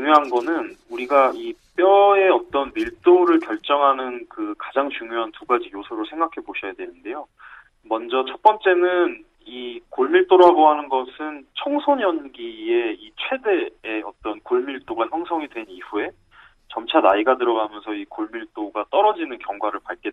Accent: native